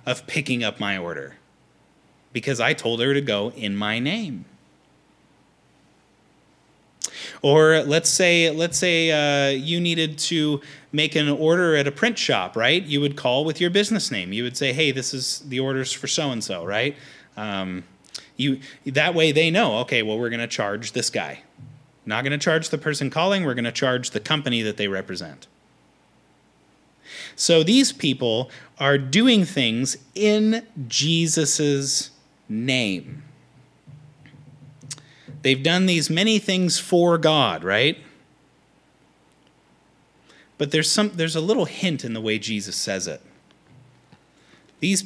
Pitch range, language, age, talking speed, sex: 130-175 Hz, English, 30-49, 145 wpm, male